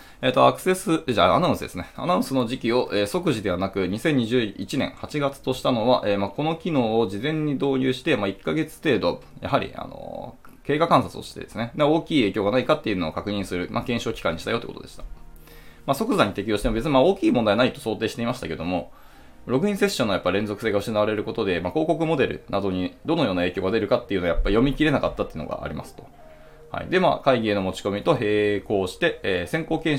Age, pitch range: 20-39, 100-135 Hz